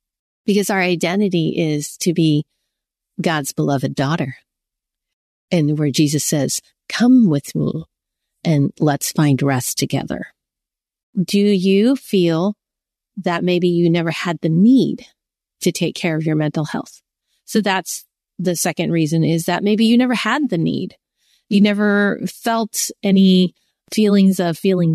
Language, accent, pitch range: English, American, 170-220 Hz